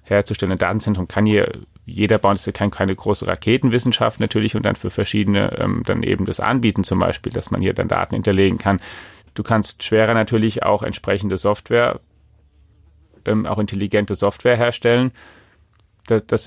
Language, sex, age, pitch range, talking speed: German, male, 30-49, 95-110 Hz, 160 wpm